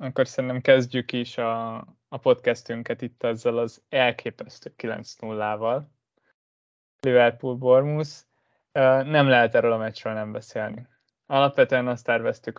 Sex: male